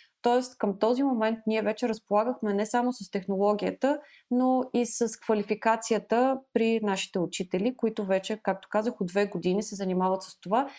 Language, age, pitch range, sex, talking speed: Bulgarian, 20-39, 195-235 Hz, female, 160 wpm